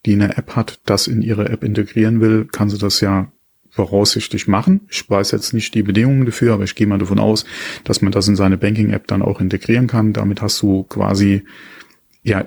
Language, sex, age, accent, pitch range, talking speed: German, male, 30-49, German, 100-110 Hz, 210 wpm